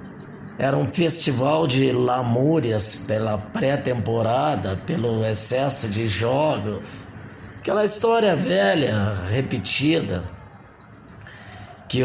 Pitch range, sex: 105-155 Hz, male